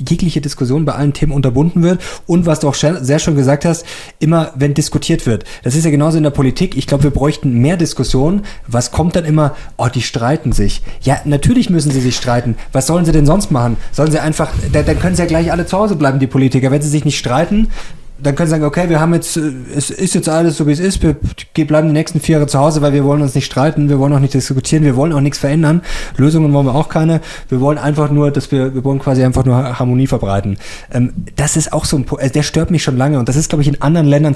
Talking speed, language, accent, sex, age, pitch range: 255 wpm, German, German, male, 20-39, 135-160 Hz